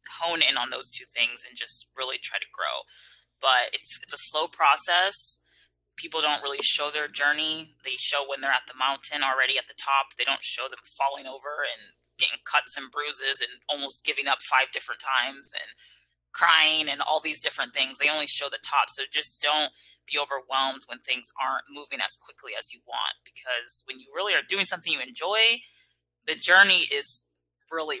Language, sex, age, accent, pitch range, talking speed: English, female, 20-39, American, 115-155 Hz, 195 wpm